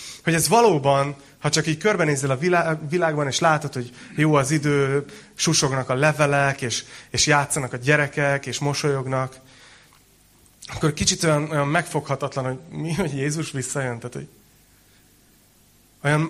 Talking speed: 140 wpm